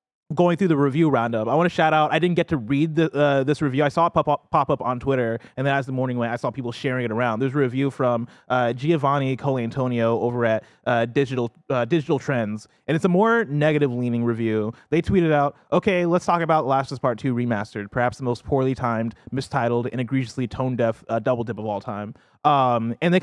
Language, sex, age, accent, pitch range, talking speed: English, male, 20-39, American, 120-150 Hz, 240 wpm